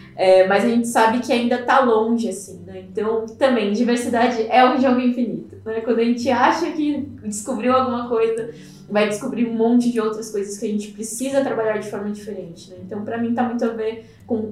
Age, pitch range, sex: 10-29, 210-245 Hz, female